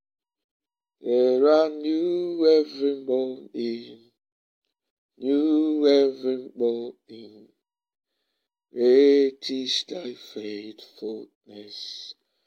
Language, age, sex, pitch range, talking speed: English, 60-79, male, 120-155 Hz, 60 wpm